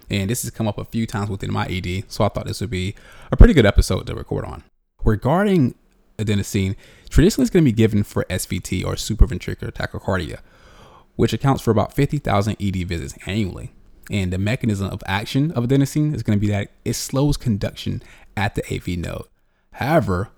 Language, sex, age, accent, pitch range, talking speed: English, male, 20-39, American, 95-115 Hz, 185 wpm